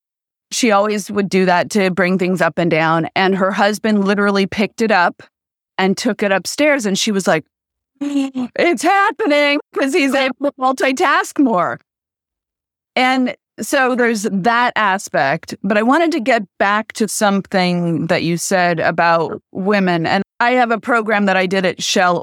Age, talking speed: 30-49, 165 wpm